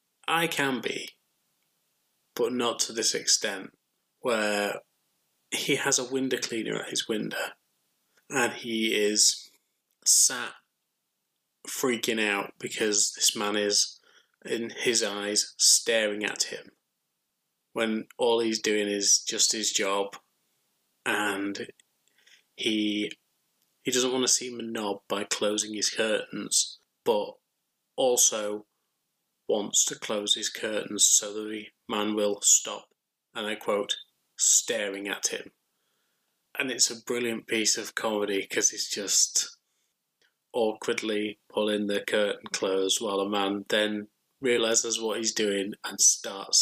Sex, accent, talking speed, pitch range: male, British, 125 wpm, 105-115 Hz